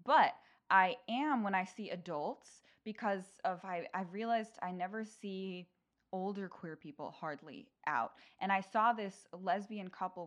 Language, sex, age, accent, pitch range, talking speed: English, female, 20-39, American, 165-210 Hz, 150 wpm